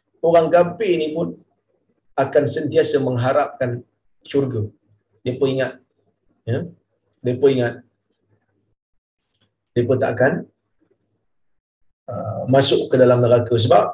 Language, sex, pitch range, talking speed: Malayalam, male, 110-160 Hz, 100 wpm